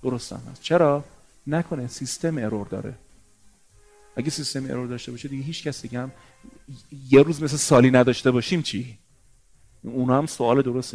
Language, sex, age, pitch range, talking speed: Persian, male, 40-59, 115-160 Hz, 150 wpm